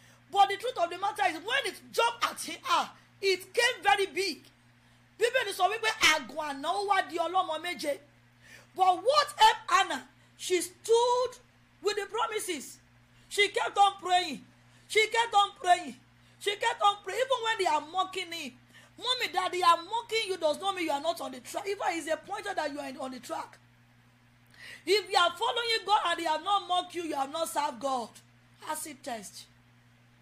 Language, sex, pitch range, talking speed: English, female, 255-395 Hz, 190 wpm